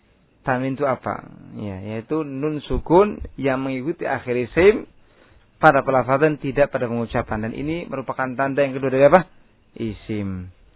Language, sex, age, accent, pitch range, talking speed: Indonesian, male, 20-39, native, 115-155 Hz, 140 wpm